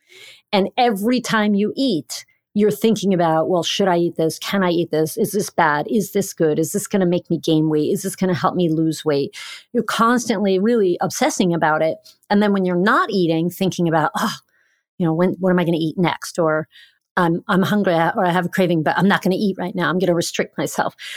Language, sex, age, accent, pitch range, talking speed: English, female, 40-59, American, 165-210 Hz, 245 wpm